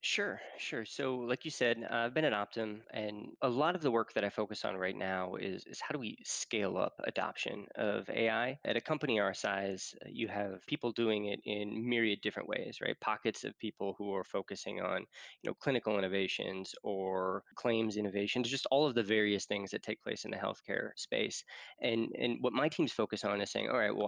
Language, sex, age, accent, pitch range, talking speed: English, male, 20-39, American, 100-115 Hz, 215 wpm